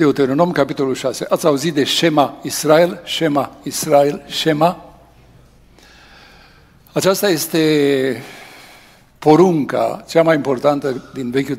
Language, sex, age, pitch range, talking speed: Romanian, male, 60-79, 135-165 Hz, 100 wpm